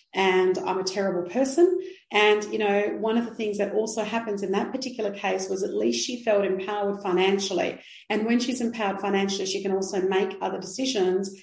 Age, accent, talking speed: 40-59, Australian, 195 wpm